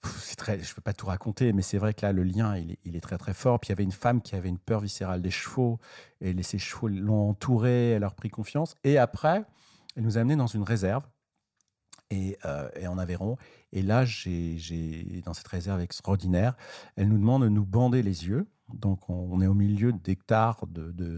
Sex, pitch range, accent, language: male, 95-120 Hz, French, French